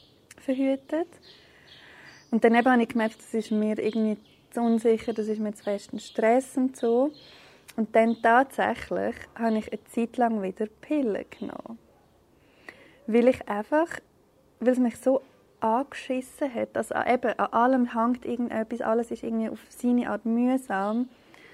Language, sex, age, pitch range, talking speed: German, female, 20-39, 215-250 Hz, 150 wpm